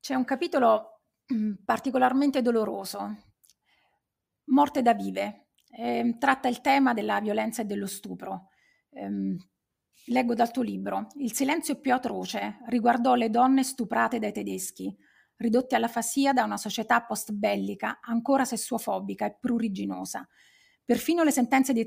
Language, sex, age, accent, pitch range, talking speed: Italian, female, 30-49, native, 215-265 Hz, 125 wpm